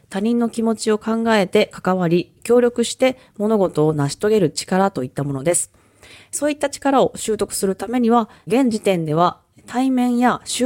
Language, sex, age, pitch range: Japanese, female, 20-39, 170-235 Hz